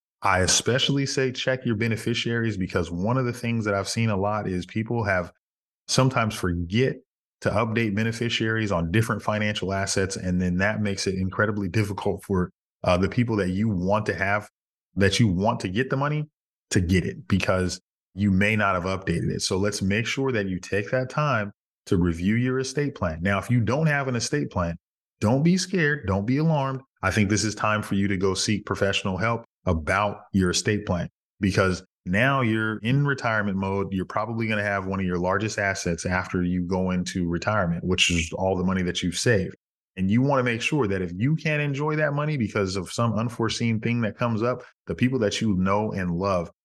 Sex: male